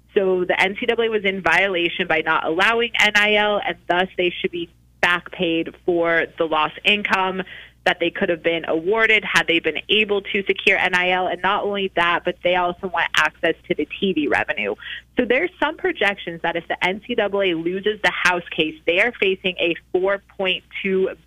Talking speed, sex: 180 wpm, female